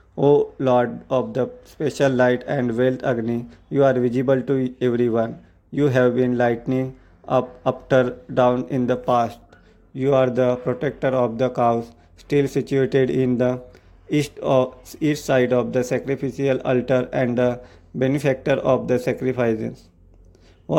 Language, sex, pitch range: English, male, 120-130 Hz